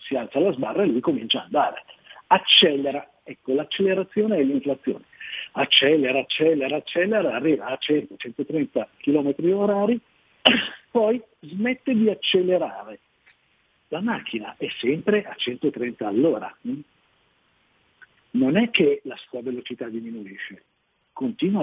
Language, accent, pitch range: Italian, native, 130-210 Hz